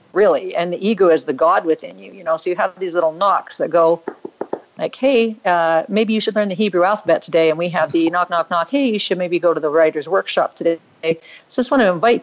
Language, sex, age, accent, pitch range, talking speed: English, female, 50-69, American, 160-210 Hz, 260 wpm